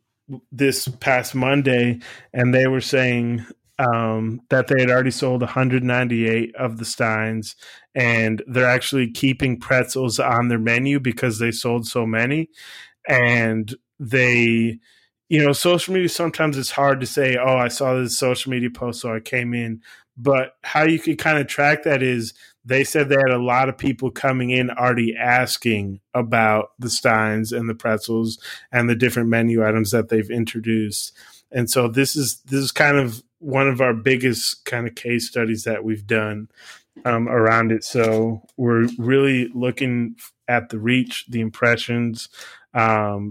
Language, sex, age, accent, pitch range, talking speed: English, male, 20-39, American, 115-130 Hz, 165 wpm